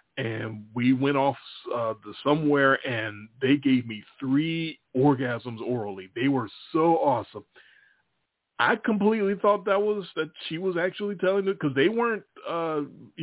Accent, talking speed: American, 150 wpm